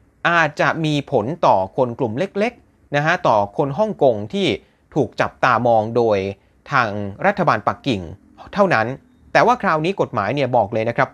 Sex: male